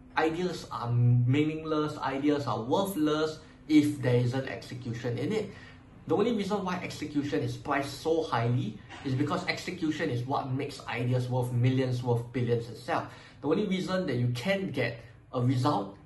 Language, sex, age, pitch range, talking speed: English, male, 20-39, 120-150 Hz, 155 wpm